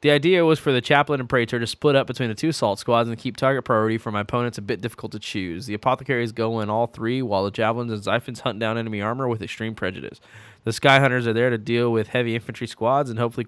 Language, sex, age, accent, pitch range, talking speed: English, male, 20-39, American, 110-130 Hz, 265 wpm